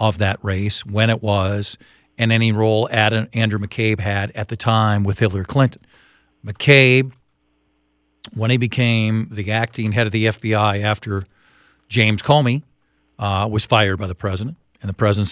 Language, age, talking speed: English, 50-69, 160 wpm